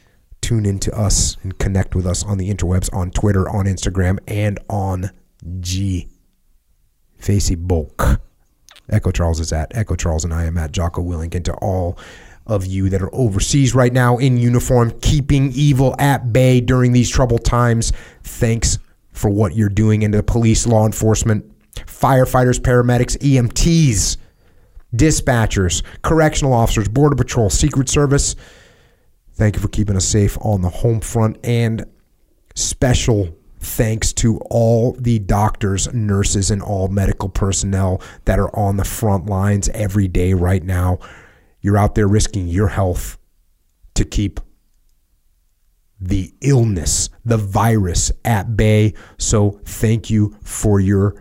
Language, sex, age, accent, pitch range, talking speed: English, male, 30-49, American, 90-115 Hz, 140 wpm